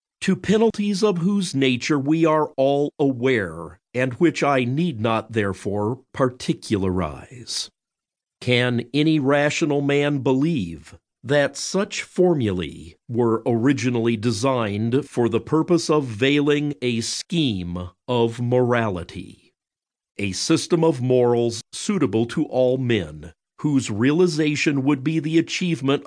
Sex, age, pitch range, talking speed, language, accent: male, 50-69, 115-155 Hz, 115 wpm, English, American